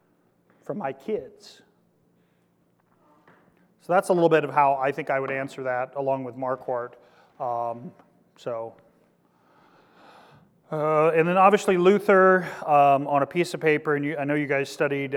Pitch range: 130-150 Hz